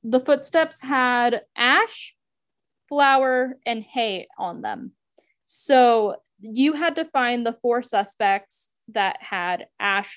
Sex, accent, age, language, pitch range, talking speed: female, American, 10-29, English, 200-265 Hz, 120 wpm